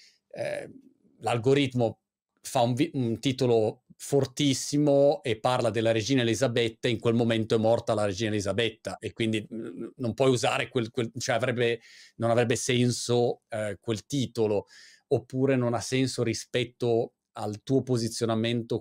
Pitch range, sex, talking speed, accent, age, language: 110-135 Hz, male, 135 wpm, native, 40-59, Italian